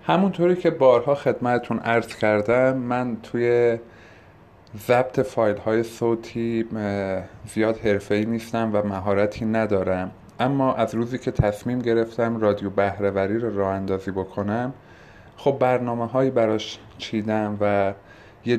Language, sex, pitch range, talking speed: Persian, male, 110-125 Hz, 120 wpm